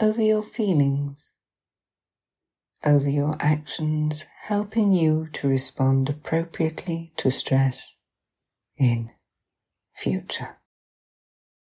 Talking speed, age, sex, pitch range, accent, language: 75 wpm, 60-79, female, 135-175 Hz, British, English